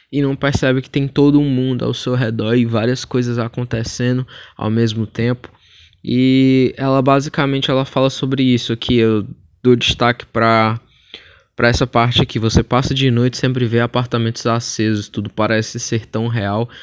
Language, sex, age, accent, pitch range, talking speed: Portuguese, male, 20-39, Brazilian, 105-130 Hz, 165 wpm